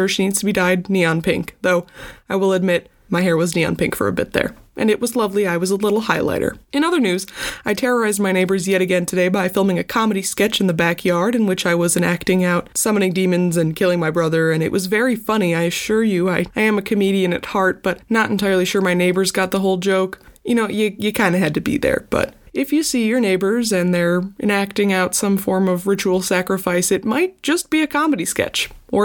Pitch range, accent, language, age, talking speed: 180-215 Hz, American, English, 20-39, 240 wpm